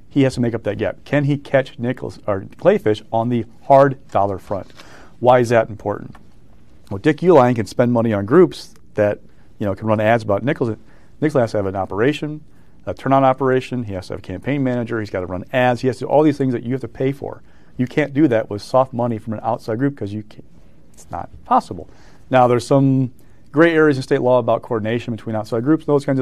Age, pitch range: 40-59, 105-130 Hz